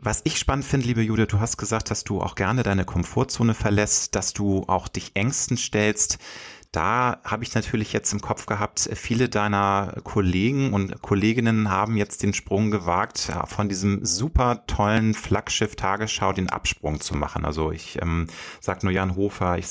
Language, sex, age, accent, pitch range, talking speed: German, male, 30-49, German, 90-120 Hz, 180 wpm